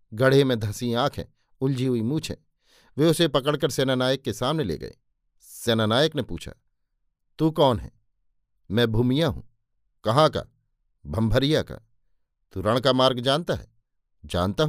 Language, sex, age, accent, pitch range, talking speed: Hindi, male, 50-69, native, 115-145 Hz, 145 wpm